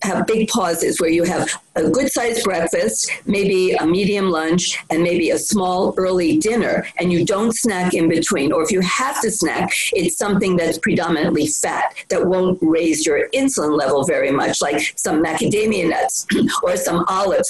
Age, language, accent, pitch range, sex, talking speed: 50-69, English, American, 170-230 Hz, female, 175 wpm